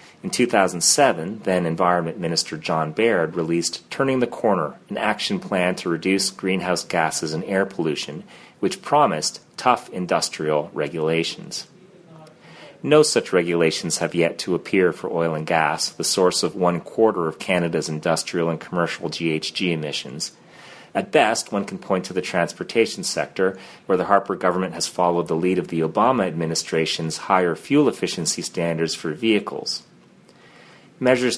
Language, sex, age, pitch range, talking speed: English, male, 30-49, 80-105 Hz, 145 wpm